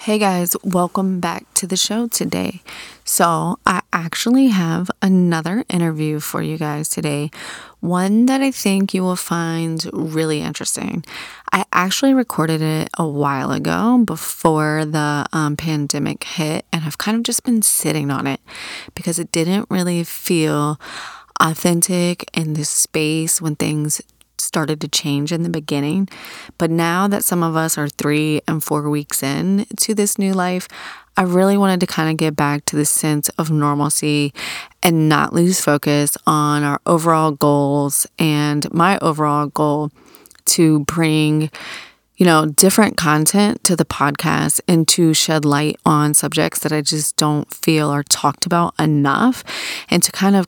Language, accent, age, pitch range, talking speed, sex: English, American, 30-49, 150-185 Hz, 160 wpm, female